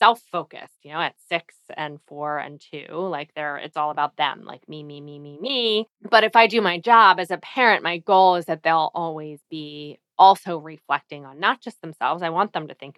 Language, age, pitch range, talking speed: English, 20-39, 155-180 Hz, 225 wpm